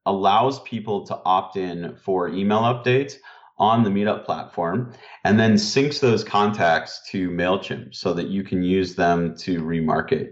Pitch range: 85-115 Hz